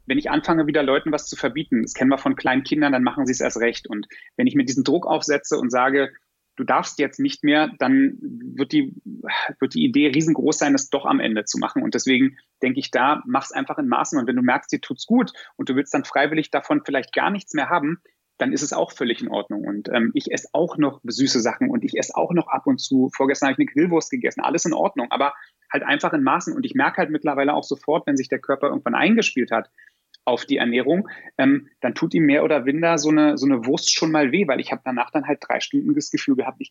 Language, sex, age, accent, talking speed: German, male, 30-49, German, 255 wpm